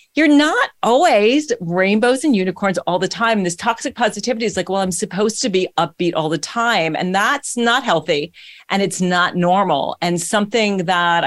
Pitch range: 175-240 Hz